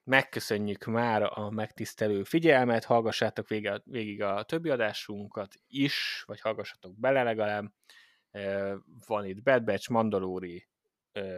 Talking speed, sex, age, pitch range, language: 110 wpm, male, 20-39, 100-120 Hz, Hungarian